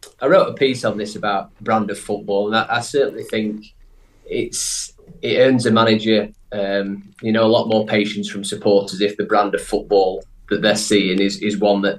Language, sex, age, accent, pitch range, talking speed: English, male, 30-49, British, 100-120 Hz, 205 wpm